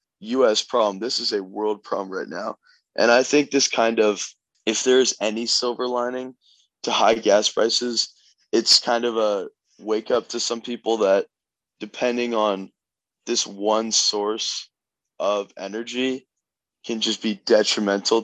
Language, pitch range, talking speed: English, 105-120 Hz, 150 wpm